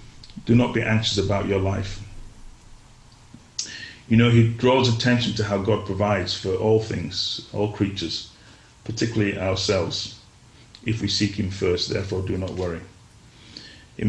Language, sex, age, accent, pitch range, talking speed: English, male, 30-49, British, 100-115 Hz, 140 wpm